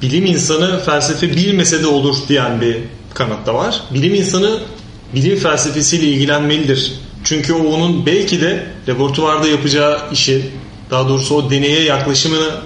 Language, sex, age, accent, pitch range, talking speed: Turkish, male, 30-49, native, 135-165 Hz, 135 wpm